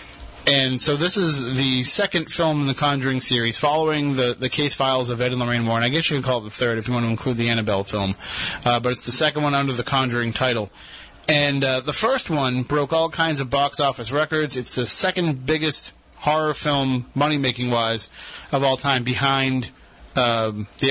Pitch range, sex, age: 125-150 Hz, male, 30-49